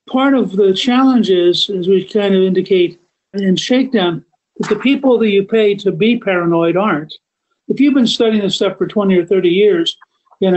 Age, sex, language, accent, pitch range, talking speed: 50-69, male, English, American, 180-220 Hz, 195 wpm